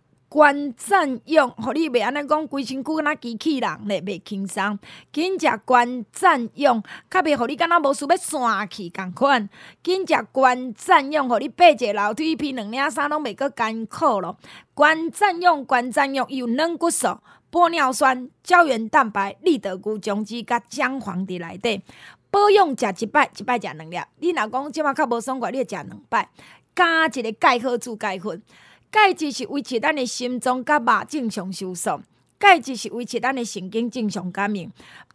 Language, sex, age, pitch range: Chinese, female, 20-39, 225-315 Hz